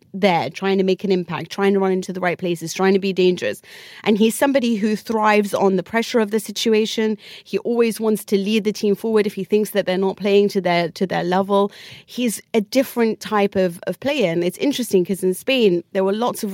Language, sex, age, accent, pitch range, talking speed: English, female, 30-49, British, 175-205 Hz, 230 wpm